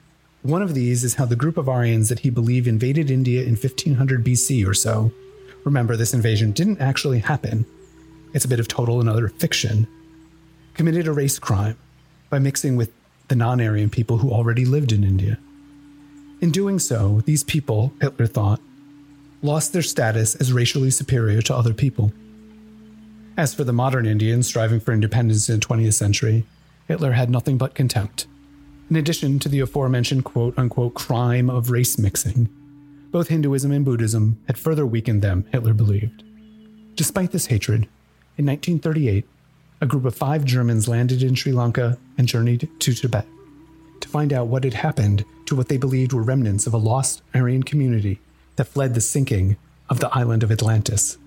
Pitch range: 115-145 Hz